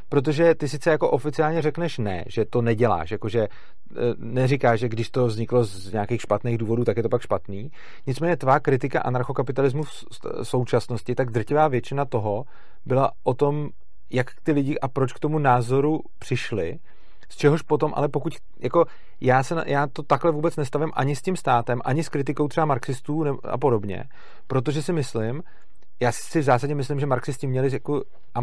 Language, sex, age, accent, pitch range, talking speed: Czech, male, 40-59, native, 125-150 Hz, 175 wpm